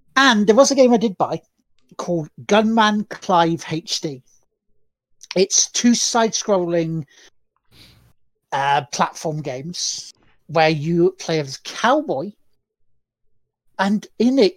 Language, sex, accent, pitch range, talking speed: English, male, British, 160-250 Hz, 115 wpm